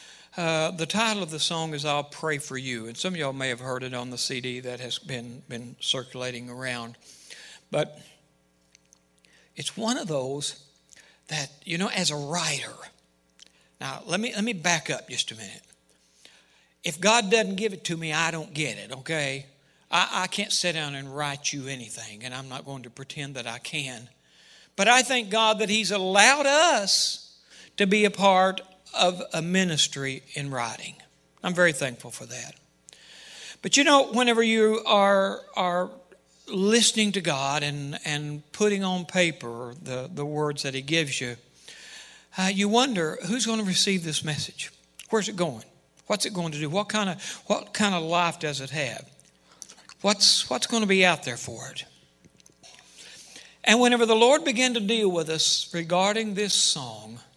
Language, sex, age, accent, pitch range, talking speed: English, male, 60-79, American, 125-195 Hz, 180 wpm